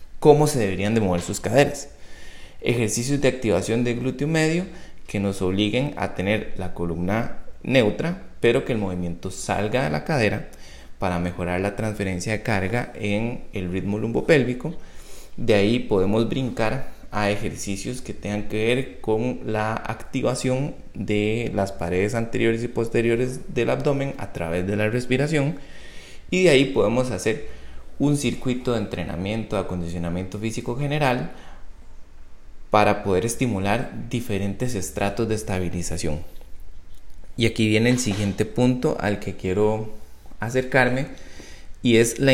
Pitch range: 95-125 Hz